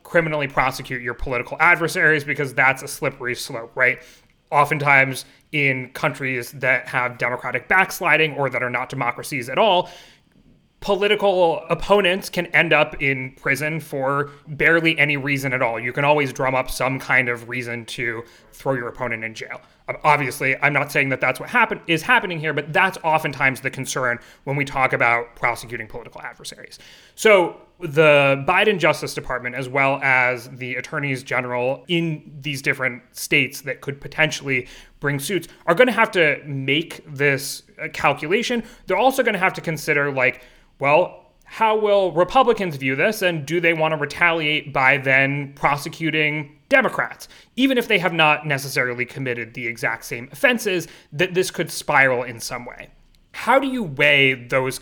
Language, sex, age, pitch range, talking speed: English, male, 30-49, 130-165 Hz, 165 wpm